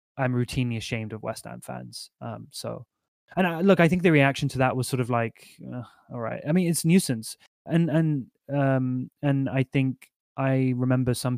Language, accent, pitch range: English, British, 120-145 Hz